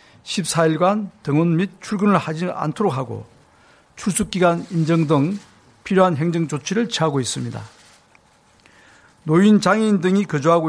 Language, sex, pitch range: Korean, male, 150-190 Hz